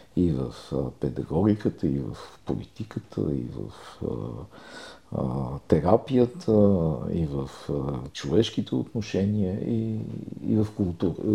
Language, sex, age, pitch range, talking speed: Bulgarian, male, 50-69, 85-110 Hz, 110 wpm